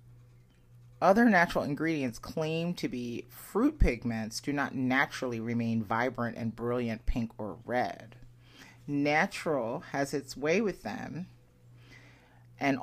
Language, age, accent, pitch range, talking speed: English, 30-49, American, 120-165 Hz, 115 wpm